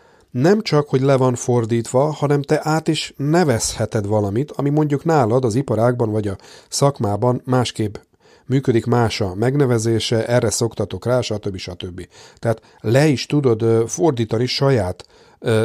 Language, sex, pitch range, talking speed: Hungarian, male, 110-140 Hz, 140 wpm